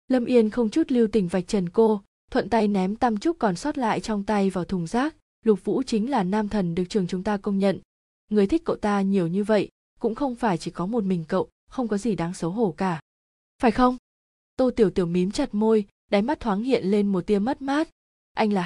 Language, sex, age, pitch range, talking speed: Vietnamese, female, 20-39, 185-225 Hz, 240 wpm